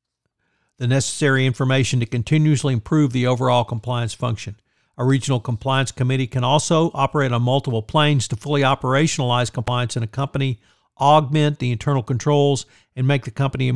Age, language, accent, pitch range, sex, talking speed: 50-69, English, American, 120-140 Hz, male, 155 wpm